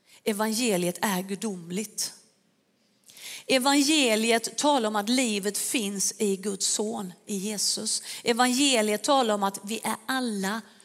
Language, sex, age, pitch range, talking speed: Swedish, female, 40-59, 200-245 Hz, 115 wpm